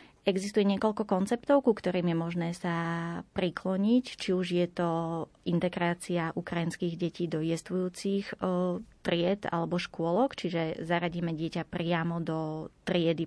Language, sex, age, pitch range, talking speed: Slovak, female, 20-39, 160-185 Hz, 120 wpm